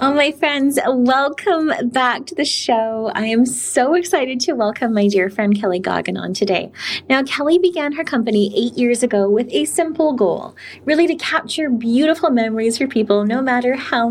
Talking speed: 185 wpm